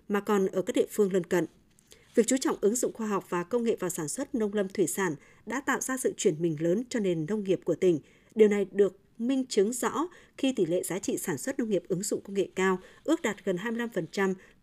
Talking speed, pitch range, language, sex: 255 wpm, 180-230 Hz, Vietnamese, female